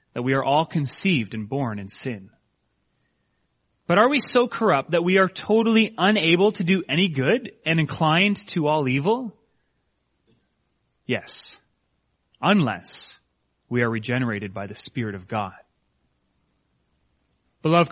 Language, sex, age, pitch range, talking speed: English, male, 30-49, 140-195 Hz, 130 wpm